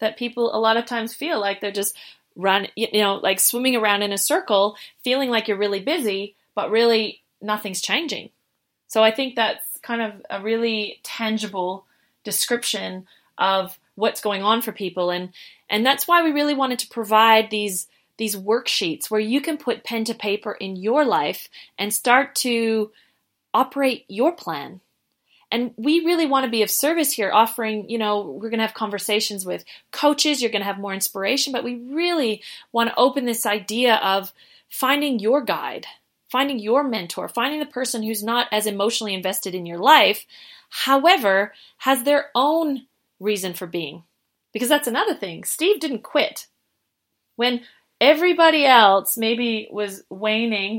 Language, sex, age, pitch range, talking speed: English, female, 30-49, 205-255 Hz, 170 wpm